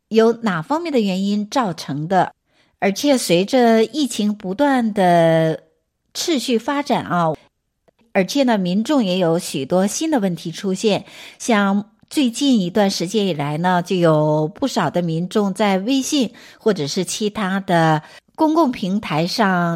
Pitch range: 170-235 Hz